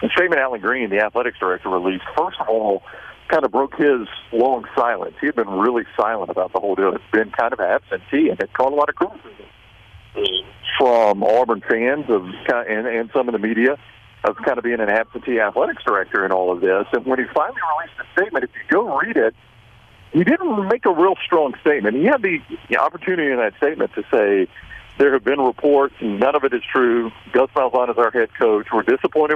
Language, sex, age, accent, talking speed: English, male, 50-69, American, 215 wpm